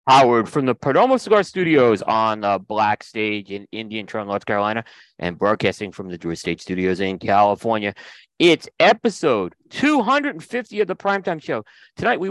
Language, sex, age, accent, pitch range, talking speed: English, male, 40-59, American, 100-150 Hz, 160 wpm